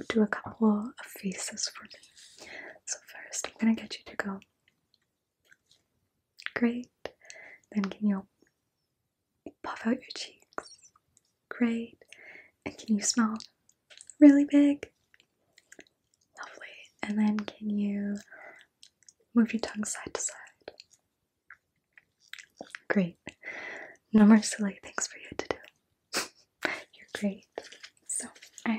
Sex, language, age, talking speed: female, English, 20-39, 110 wpm